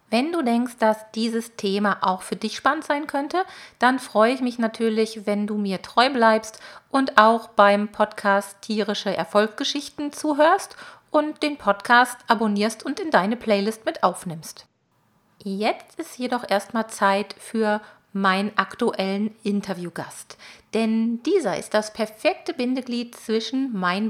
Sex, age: female, 40-59